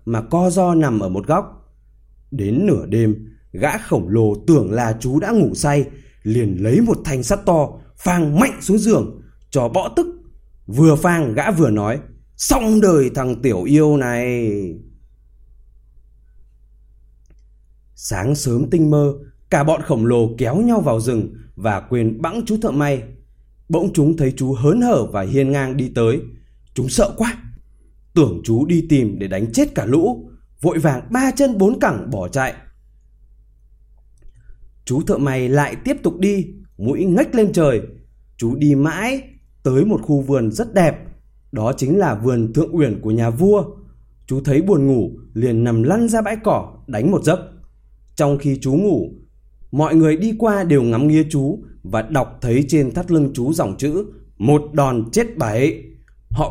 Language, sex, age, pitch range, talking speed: Vietnamese, male, 20-39, 115-165 Hz, 170 wpm